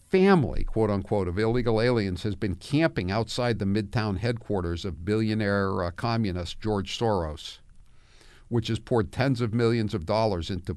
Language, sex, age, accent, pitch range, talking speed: English, male, 50-69, American, 95-115 Hz, 150 wpm